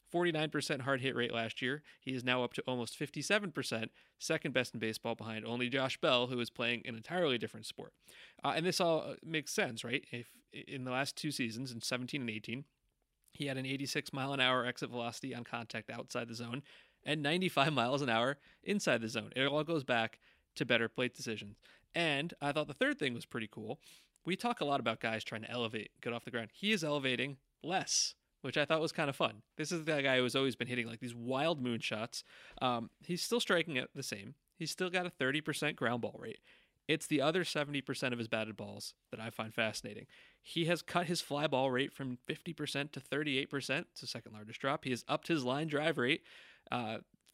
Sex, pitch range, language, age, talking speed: male, 120-150 Hz, English, 30-49, 215 wpm